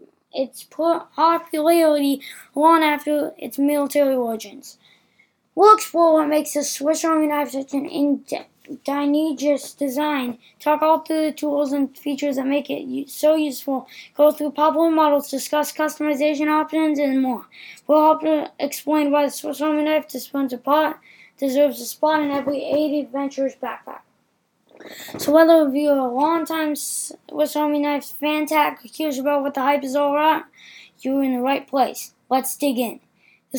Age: 20-39